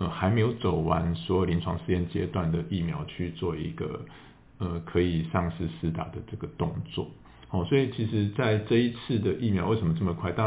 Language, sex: Chinese, male